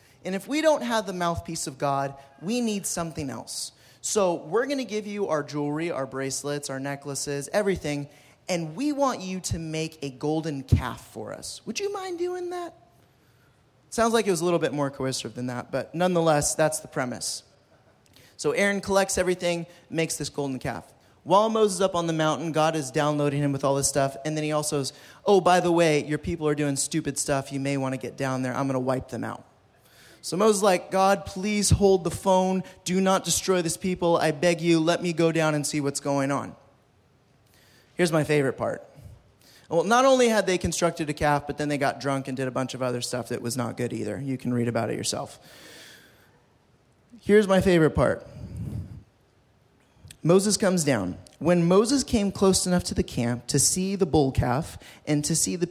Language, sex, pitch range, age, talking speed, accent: English, male, 135-180 Hz, 20-39, 210 wpm, American